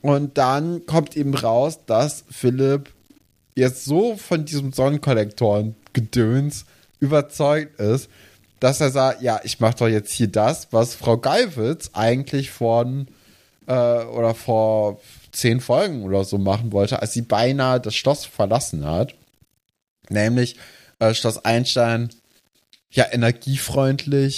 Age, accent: 20-39, German